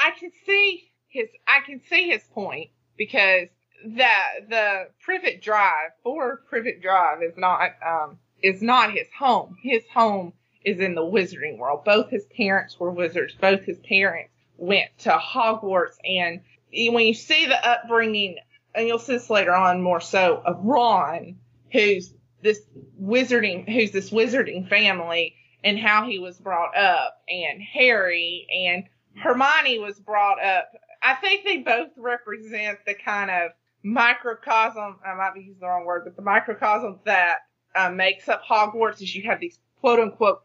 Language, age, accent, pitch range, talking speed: English, 20-39, American, 180-230 Hz, 160 wpm